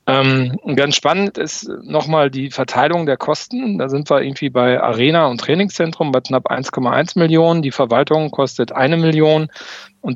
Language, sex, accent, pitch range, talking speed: German, male, German, 125-160 Hz, 160 wpm